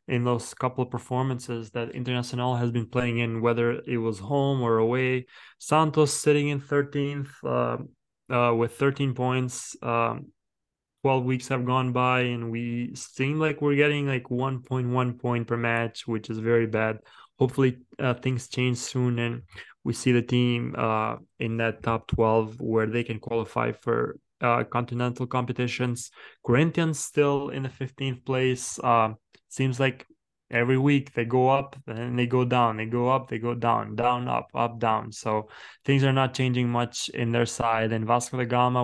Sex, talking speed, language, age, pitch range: male, 170 wpm, English, 20-39, 120-130 Hz